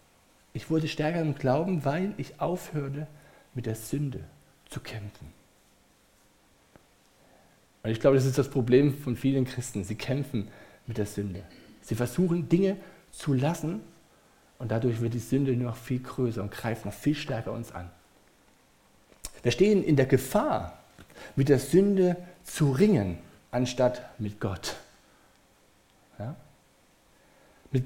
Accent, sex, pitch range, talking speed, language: German, male, 110-160 Hz, 135 wpm, German